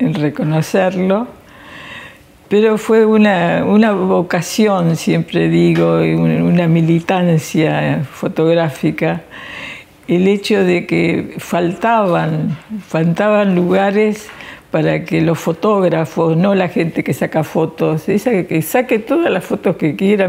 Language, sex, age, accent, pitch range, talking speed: Spanish, female, 60-79, Argentinian, 160-195 Hz, 110 wpm